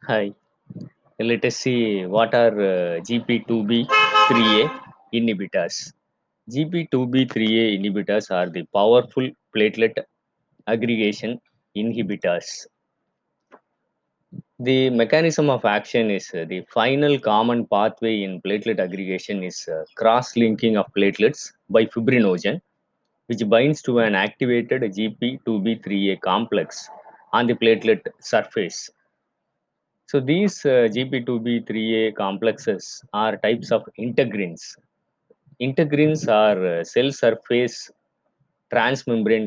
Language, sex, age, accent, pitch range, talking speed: Tamil, male, 20-39, native, 105-130 Hz, 95 wpm